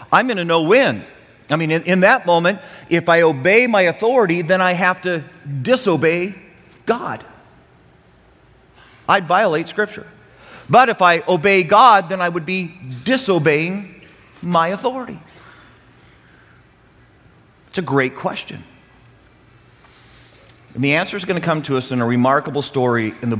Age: 40-59